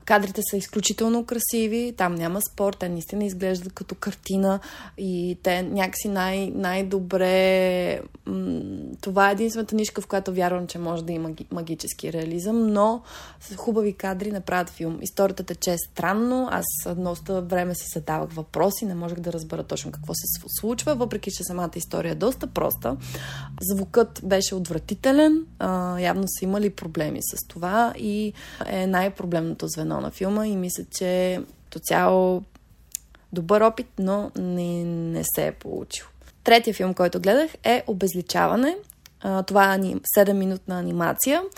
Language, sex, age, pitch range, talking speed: Bulgarian, female, 20-39, 175-215 Hz, 145 wpm